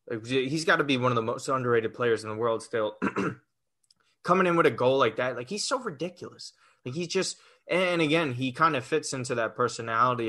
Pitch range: 115-155 Hz